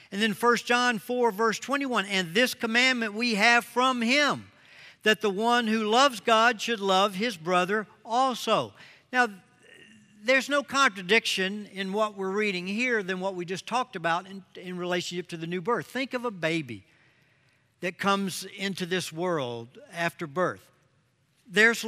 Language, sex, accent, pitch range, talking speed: English, male, American, 165-230 Hz, 160 wpm